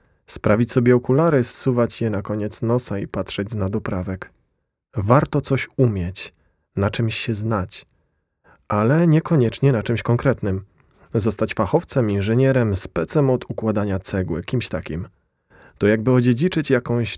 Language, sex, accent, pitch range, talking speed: Polish, male, native, 100-125 Hz, 130 wpm